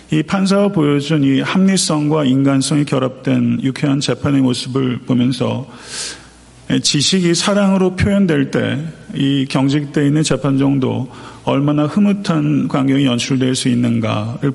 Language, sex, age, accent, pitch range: Korean, male, 40-59, native, 130-155 Hz